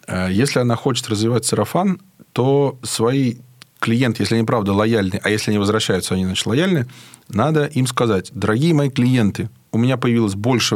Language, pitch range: Russian, 110-145 Hz